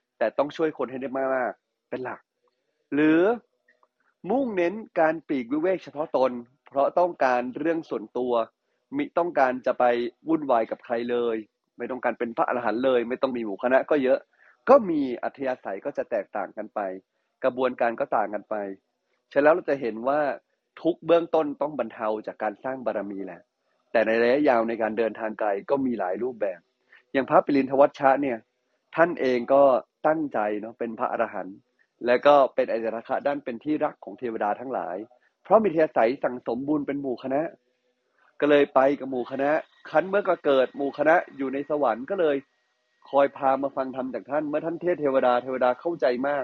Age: 20-39